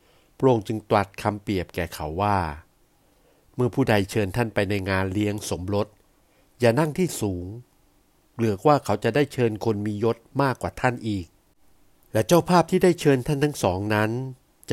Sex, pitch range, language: male, 100-130 Hz, Thai